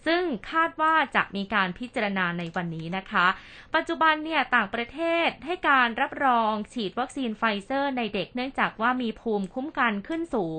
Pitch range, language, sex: 195-255 Hz, Thai, female